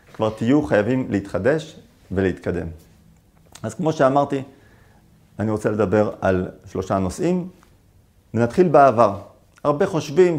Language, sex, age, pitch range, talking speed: Hebrew, male, 40-59, 100-150 Hz, 105 wpm